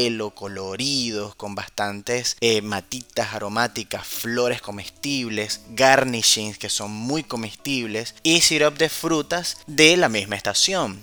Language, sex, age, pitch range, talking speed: Spanish, male, 20-39, 110-140 Hz, 115 wpm